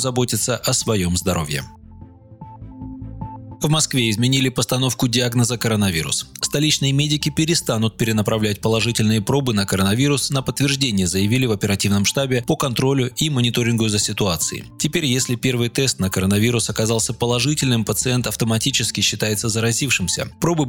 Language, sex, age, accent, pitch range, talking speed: Russian, male, 20-39, native, 105-130 Hz, 125 wpm